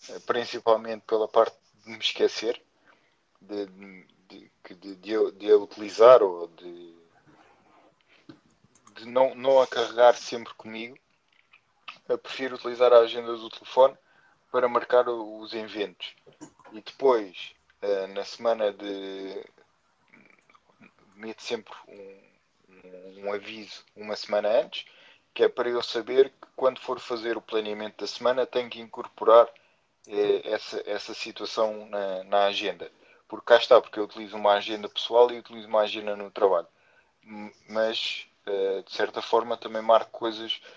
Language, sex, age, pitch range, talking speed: Portuguese, male, 20-39, 100-120 Hz, 135 wpm